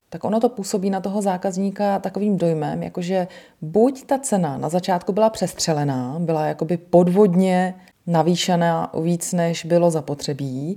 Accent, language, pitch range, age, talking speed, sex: native, Czech, 160-190 Hz, 30-49, 145 wpm, female